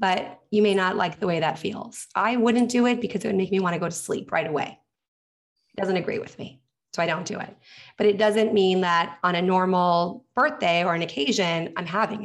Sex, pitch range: female, 170-210 Hz